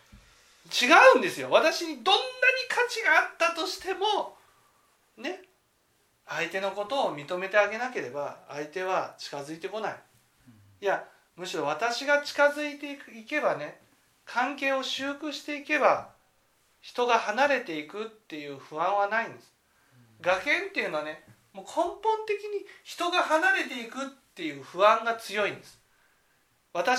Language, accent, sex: Japanese, native, male